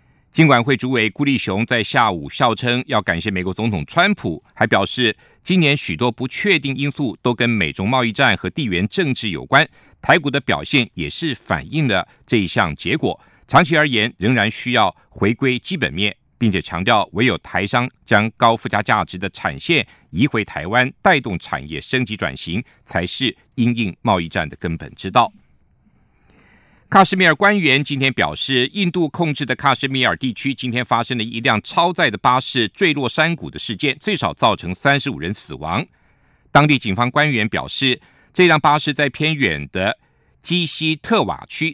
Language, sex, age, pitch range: German, male, 50-69, 110-145 Hz